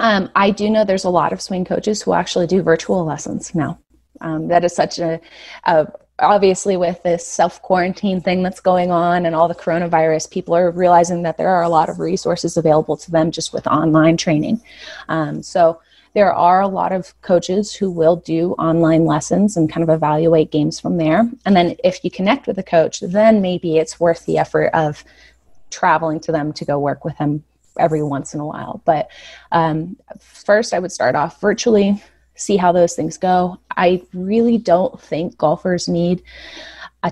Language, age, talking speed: English, 30-49, 190 wpm